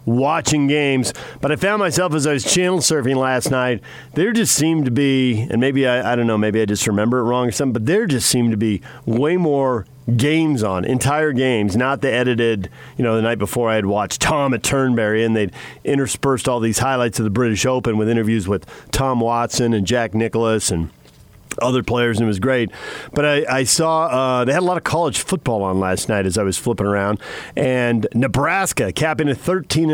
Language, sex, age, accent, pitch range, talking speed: English, male, 40-59, American, 110-135 Hz, 215 wpm